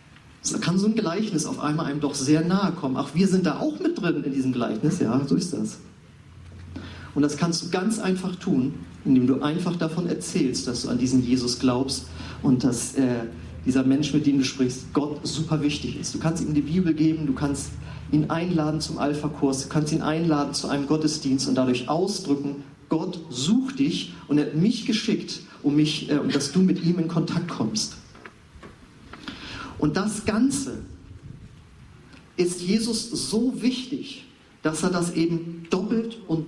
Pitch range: 145-185 Hz